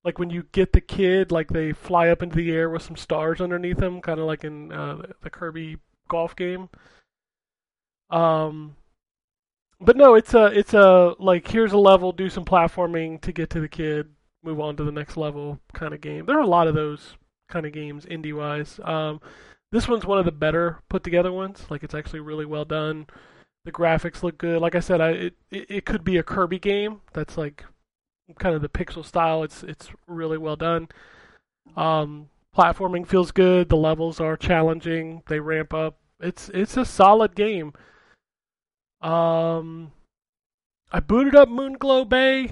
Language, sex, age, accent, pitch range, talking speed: English, male, 20-39, American, 160-190 Hz, 180 wpm